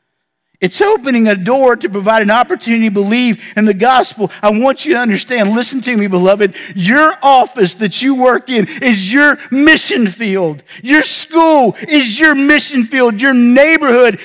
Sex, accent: male, American